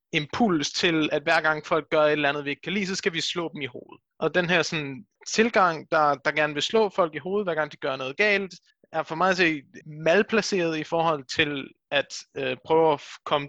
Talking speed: 240 wpm